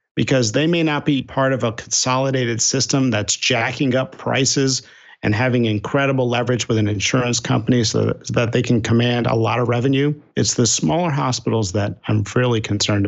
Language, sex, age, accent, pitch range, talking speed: English, male, 50-69, American, 110-135 Hz, 180 wpm